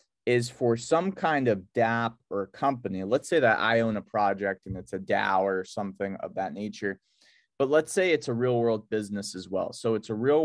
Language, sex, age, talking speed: English, male, 30-49, 220 wpm